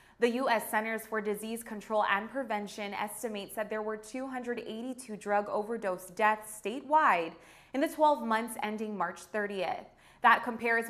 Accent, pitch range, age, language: American, 200-245 Hz, 20-39, English